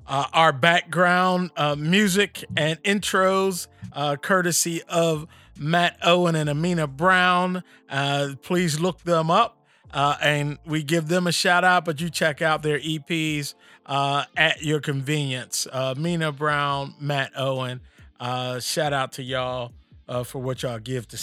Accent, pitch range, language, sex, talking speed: American, 135-180 Hz, English, male, 145 wpm